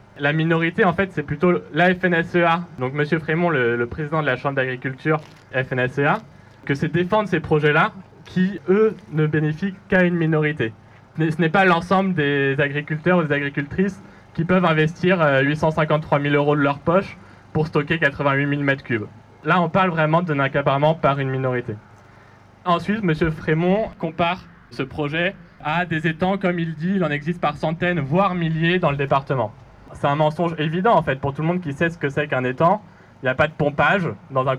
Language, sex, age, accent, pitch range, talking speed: French, male, 20-39, French, 140-175 Hz, 195 wpm